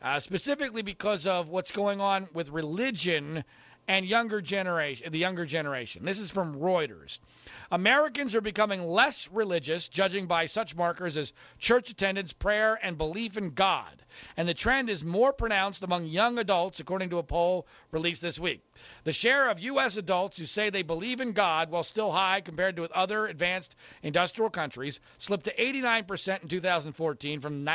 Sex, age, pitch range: male, 40-59, 165-225 Hz